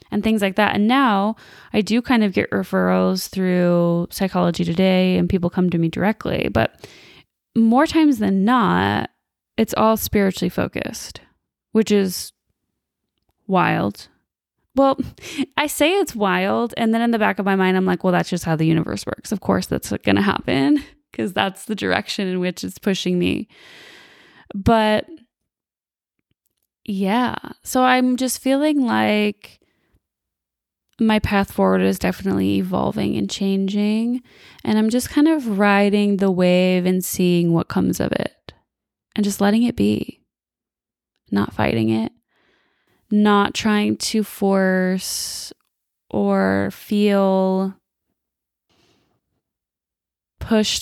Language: English